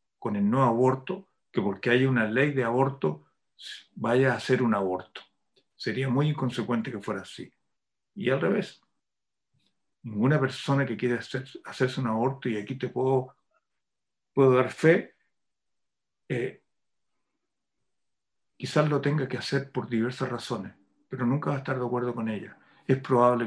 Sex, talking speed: male, 150 wpm